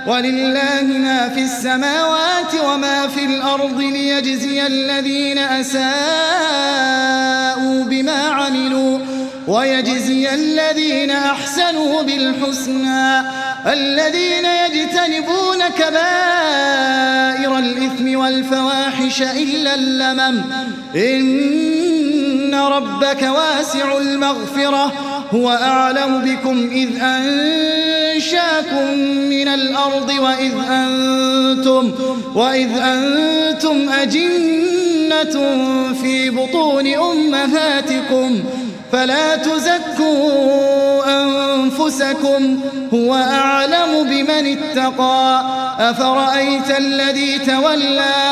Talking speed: 65 wpm